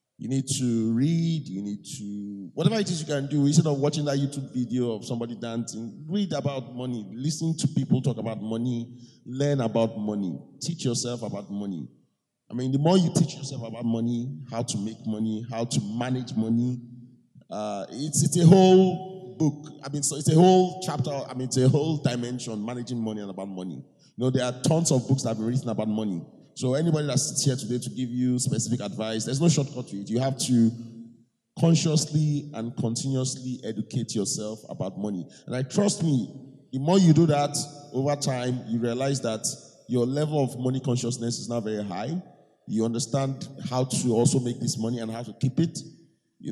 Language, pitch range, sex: English, 115-145 Hz, male